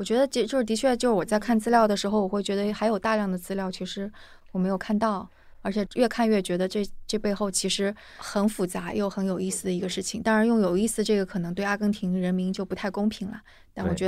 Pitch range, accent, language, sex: 180-210 Hz, native, Chinese, female